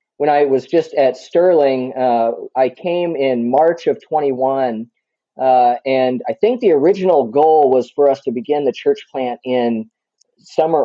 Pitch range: 125-170 Hz